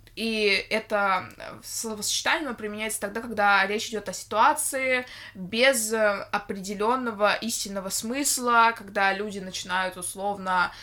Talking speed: 100 wpm